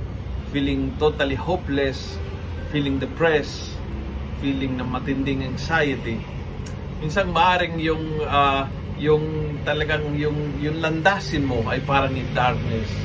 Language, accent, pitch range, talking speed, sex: Filipino, native, 110-165 Hz, 105 wpm, male